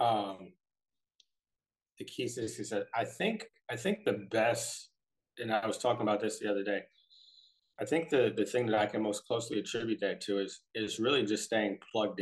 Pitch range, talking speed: 95-105 Hz, 190 wpm